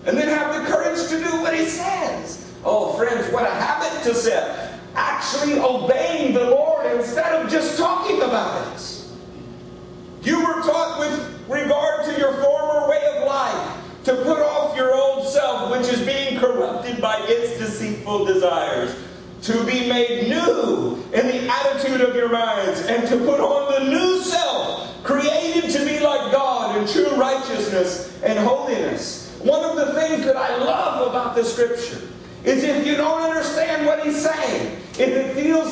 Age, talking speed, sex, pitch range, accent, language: 40-59, 170 wpm, male, 235-300 Hz, American, English